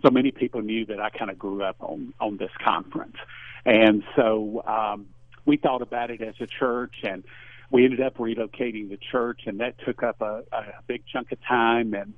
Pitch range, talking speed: 110-125 Hz, 205 wpm